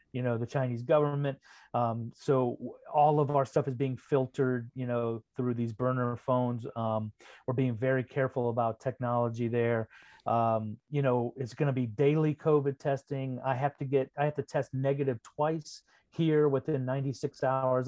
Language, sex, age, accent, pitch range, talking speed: English, male, 40-59, American, 125-145 Hz, 170 wpm